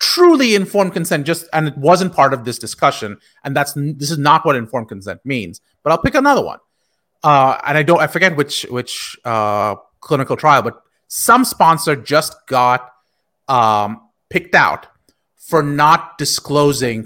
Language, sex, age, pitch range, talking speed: English, male, 30-49, 140-190 Hz, 165 wpm